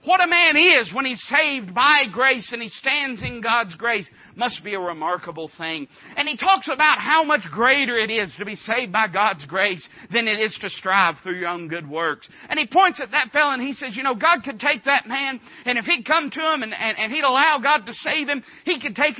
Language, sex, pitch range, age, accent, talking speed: English, male, 220-300 Hz, 50-69, American, 245 wpm